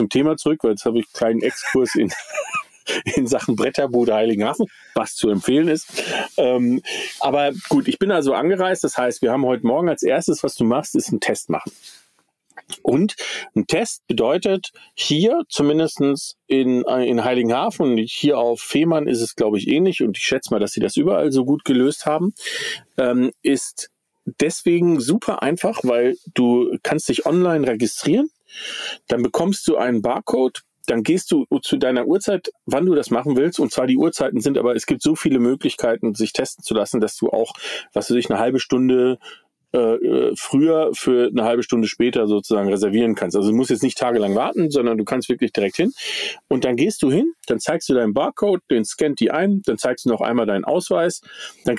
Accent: German